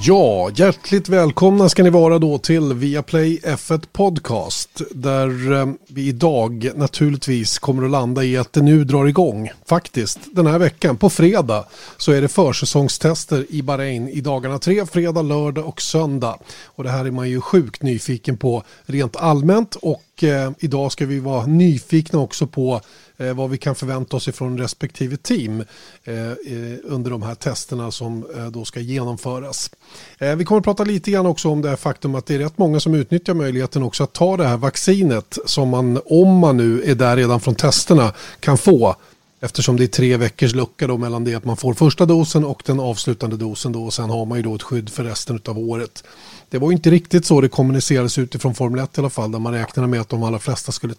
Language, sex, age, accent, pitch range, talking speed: Swedish, male, 30-49, native, 125-160 Hz, 200 wpm